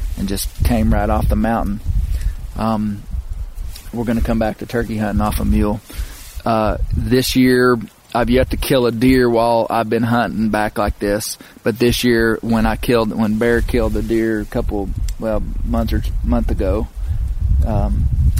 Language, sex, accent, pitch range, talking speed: English, male, American, 100-115 Hz, 175 wpm